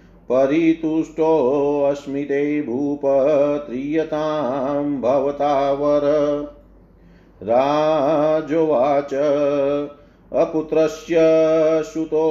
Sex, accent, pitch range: male, native, 145-155 Hz